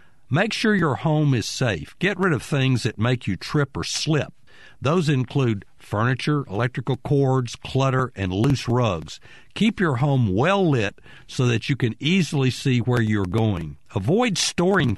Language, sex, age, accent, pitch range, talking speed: English, male, 50-69, American, 115-150 Hz, 165 wpm